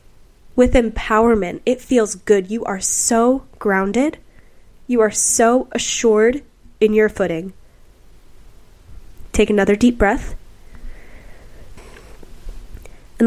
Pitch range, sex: 200-245 Hz, female